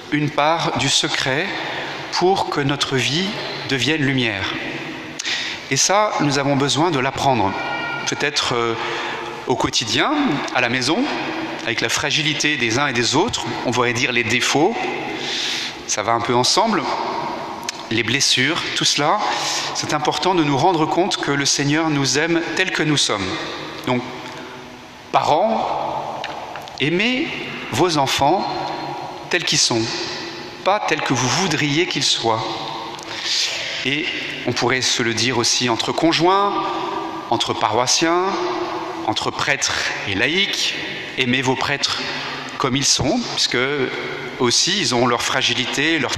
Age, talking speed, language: 40-59, 135 wpm, French